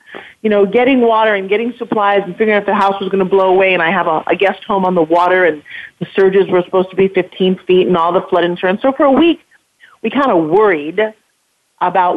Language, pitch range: English, 180-220 Hz